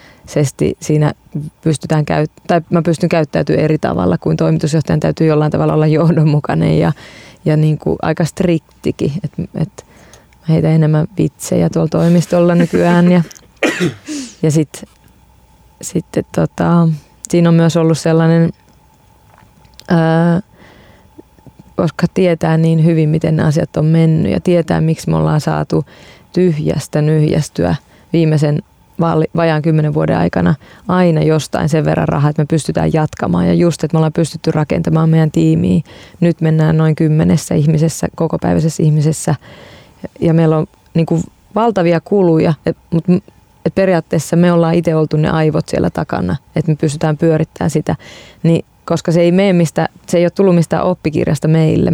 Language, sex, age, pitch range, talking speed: Finnish, female, 20-39, 155-170 Hz, 145 wpm